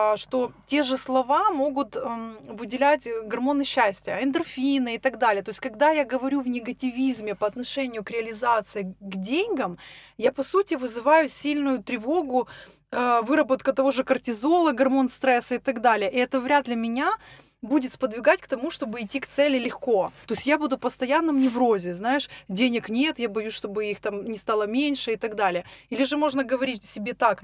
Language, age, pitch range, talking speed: Russian, 20-39, 220-280 Hz, 180 wpm